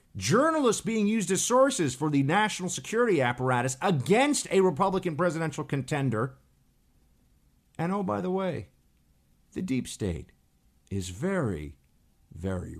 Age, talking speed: 50-69, 120 wpm